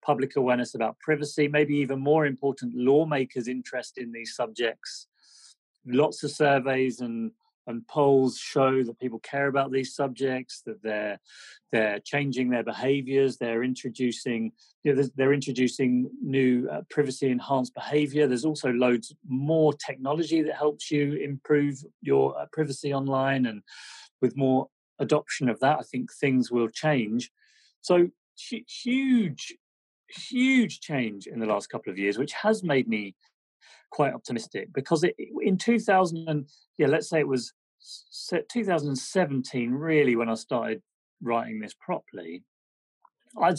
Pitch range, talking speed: 125-150 Hz, 150 wpm